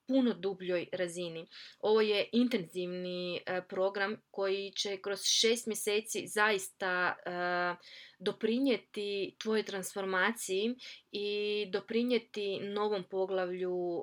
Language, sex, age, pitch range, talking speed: Croatian, female, 20-39, 185-215 Hz, 85 wpm